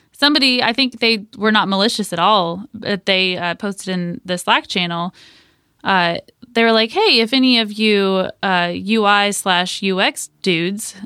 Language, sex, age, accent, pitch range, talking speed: English, female, 20-39, American, 185-240 Hz, 170 wpm